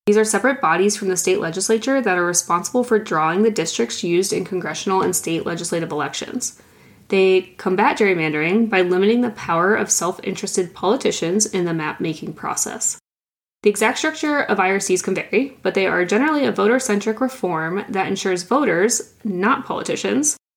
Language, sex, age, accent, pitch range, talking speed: English, female, 20-39, American, 180-220 Hz, 170 wpm